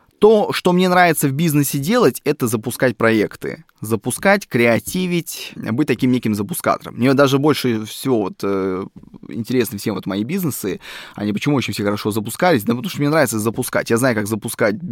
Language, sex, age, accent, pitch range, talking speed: Russian, male, 20-39, native, 105-145 Hz, 165 wpm